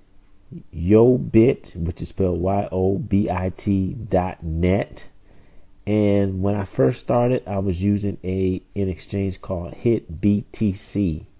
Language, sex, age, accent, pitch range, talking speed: English, male, 40-59, American, 90-110 Hz, 105 wpm